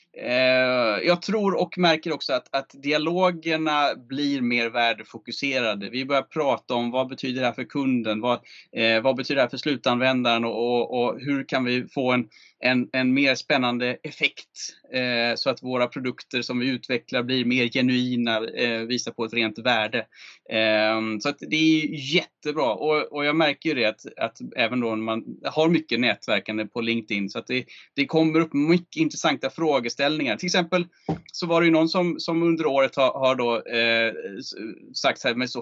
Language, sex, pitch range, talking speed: Swedish, male, 120-155 Hz, 185 wpm